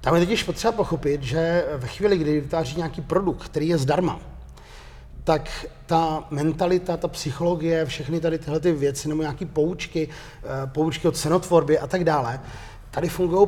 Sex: male